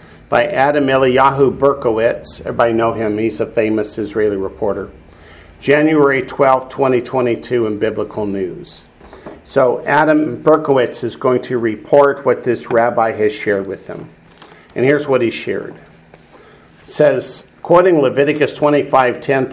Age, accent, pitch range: 50-69, American, 115-145 Hz